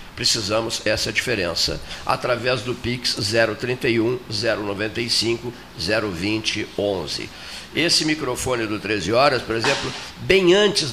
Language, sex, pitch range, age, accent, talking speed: Portuguese, male, 110-145 Hz, 60-79, Brazilian, 105 wpm